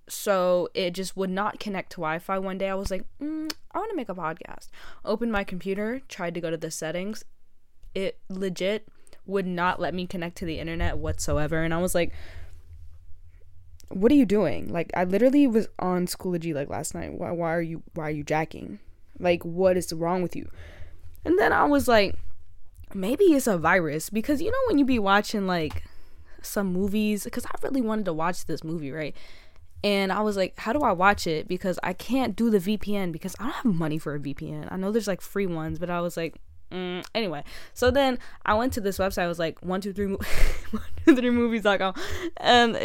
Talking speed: 205 wpm